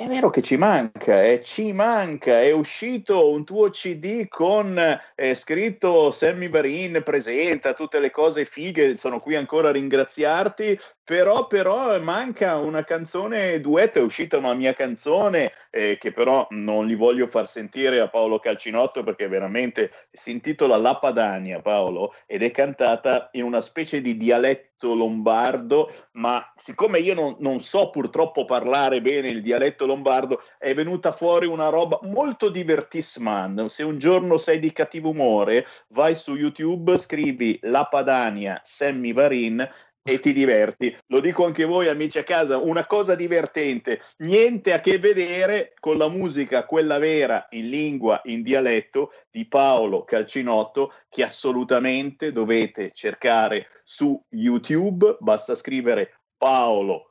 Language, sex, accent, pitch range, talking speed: Italian, male, native, 130-205 Hz, 145 wpm